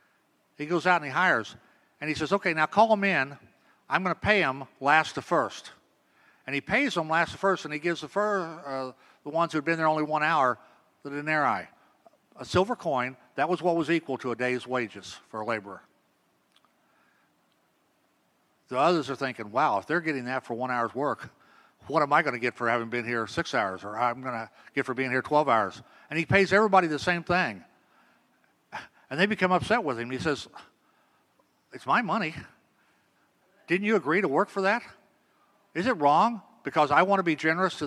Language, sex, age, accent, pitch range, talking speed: English, male, 50-69, American, 130-175 Hz, 205 wpm